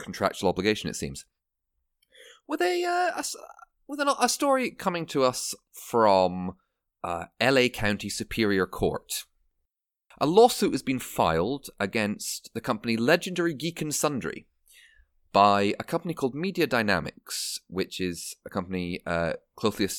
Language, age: English, 30-49